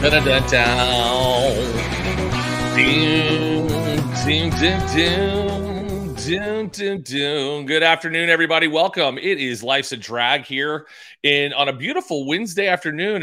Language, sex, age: English, male, 30-49